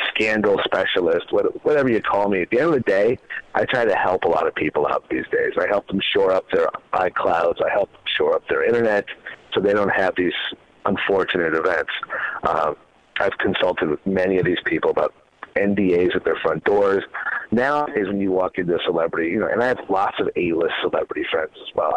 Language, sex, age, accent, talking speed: English, male, 40-59, American, 210 wpm